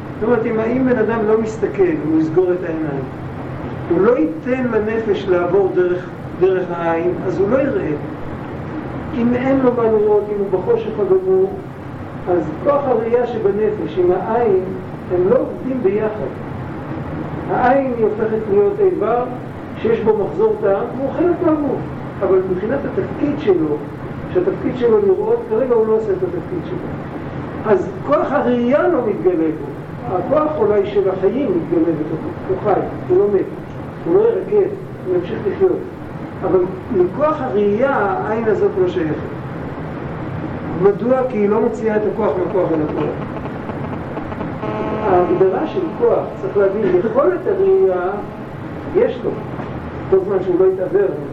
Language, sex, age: Hebrew, male, 50-69